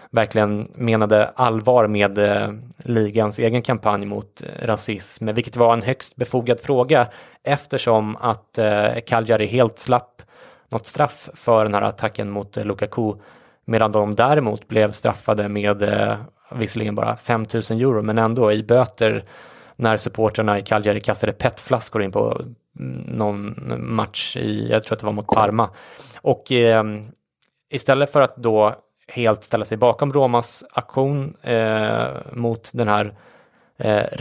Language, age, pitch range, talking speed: English, 20-39, 105-120 Hz, 140 wpm